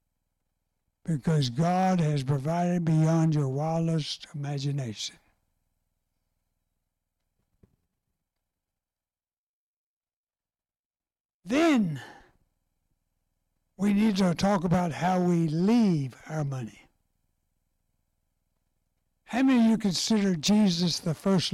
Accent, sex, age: American, male, 60-79